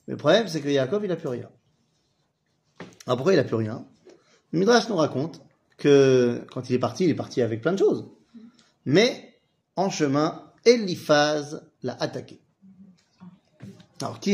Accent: French